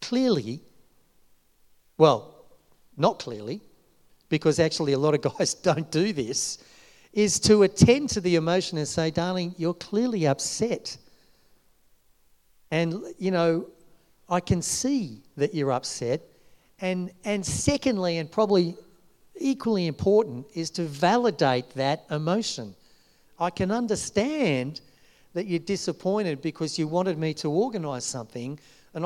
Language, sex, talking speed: English, male, 125 wpm